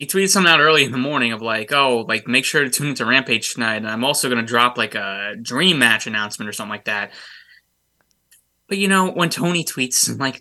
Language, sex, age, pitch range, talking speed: English, male, 20-39, 120-150 Hz, 235 wpm